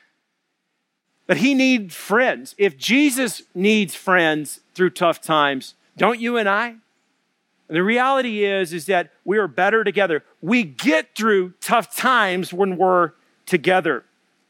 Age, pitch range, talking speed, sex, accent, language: 40-59, 175-225 Hz, 135 wpm, male, American, English